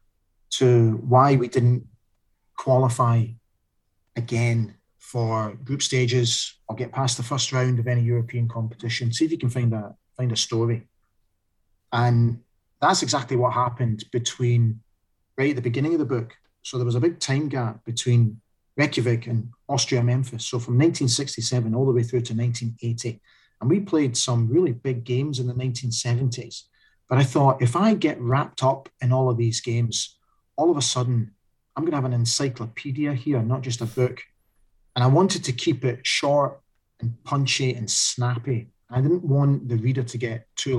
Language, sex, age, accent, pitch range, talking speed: English, male, 40-59, British, 115-130 Hz, 170 wpm